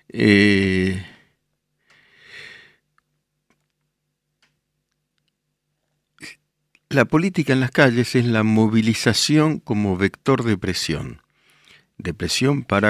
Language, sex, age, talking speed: Spanish, male, 50-69, 75 wpm